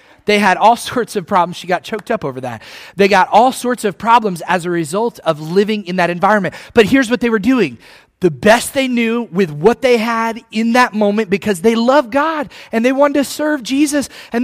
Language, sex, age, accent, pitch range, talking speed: English, male, 30-49, American, 150-220 Hz, 225 wpm